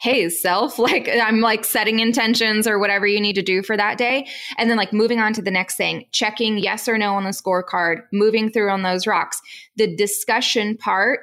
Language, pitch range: English, 205-250 Hz